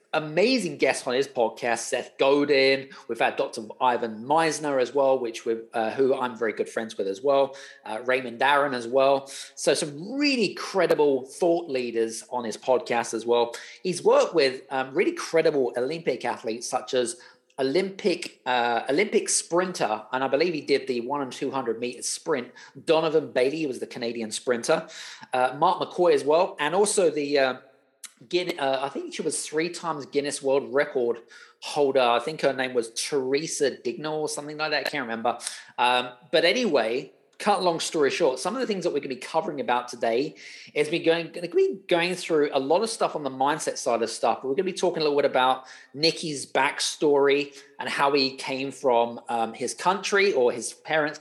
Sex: male